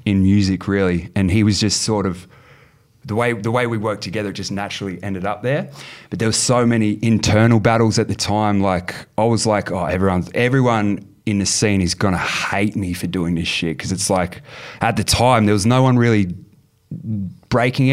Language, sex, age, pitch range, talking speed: English, male, 20-39, 95-115 Hz, 205 wpm